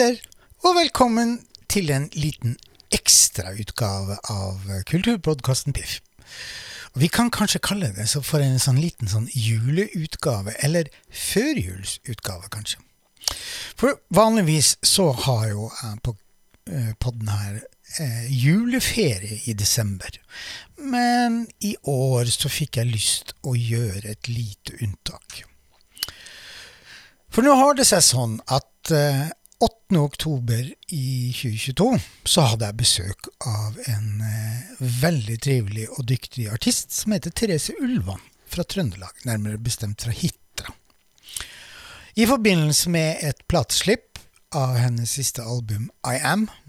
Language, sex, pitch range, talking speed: English, male, 110-170 Hz, 120 wpm